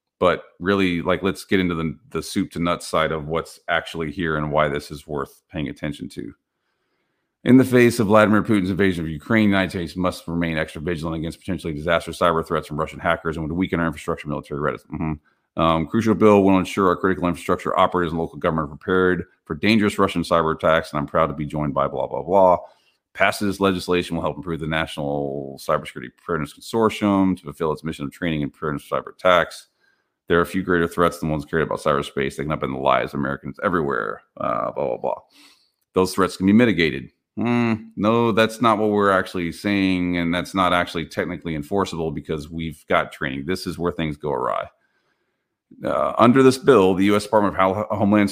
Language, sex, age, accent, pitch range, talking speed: English, male, 40-59, American, 80-95 Hz, 210 wpm